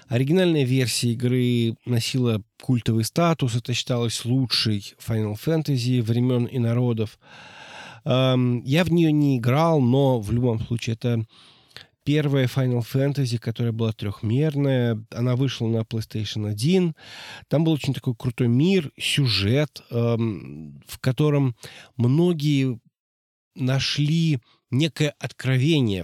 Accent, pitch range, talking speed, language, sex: native, 115-140 Hz, 110 wpm, Russian, male